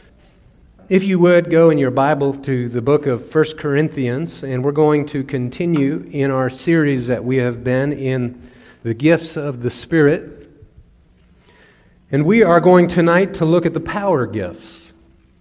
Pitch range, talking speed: 130-170 Hz, 165 wpm